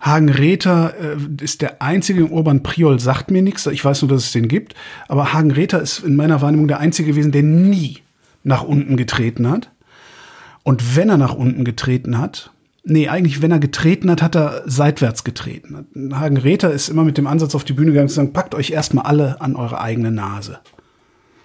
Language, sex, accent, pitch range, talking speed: German, male, German, 135-160 Hz, 200 wpm